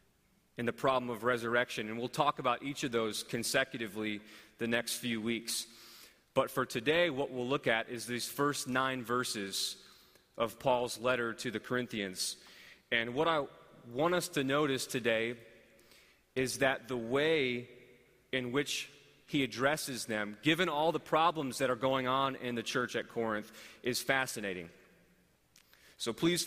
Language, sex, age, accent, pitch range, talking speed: English, male, 30-49, American, 115-135 Hz, 155 wpm